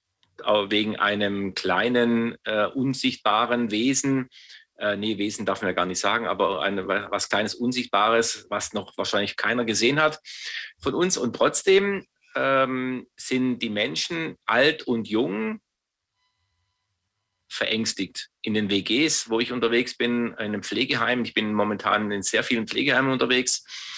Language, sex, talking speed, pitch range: German, male, 140 wpm, 105-130 Hz